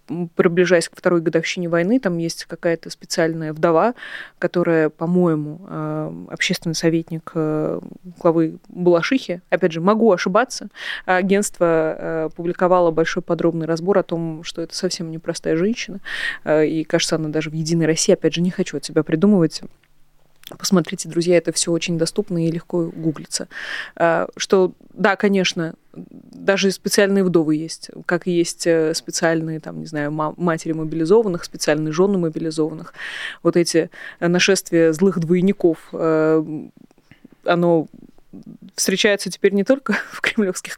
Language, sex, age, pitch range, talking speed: Russian, female, 20-39, 165-195 Hz, 125 wpm